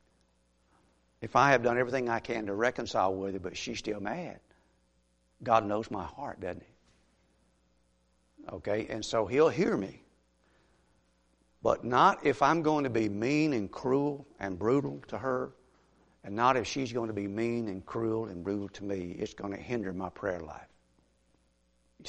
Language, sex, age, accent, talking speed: English, male, 60-79, American, 170 wpm